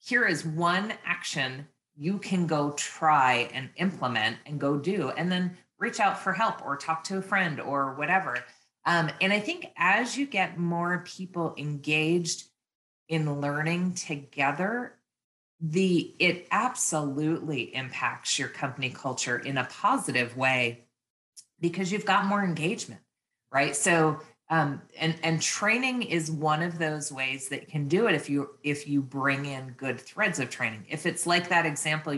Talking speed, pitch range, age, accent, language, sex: 160 wpm, 140-175 Hz, 30-49, American, English, female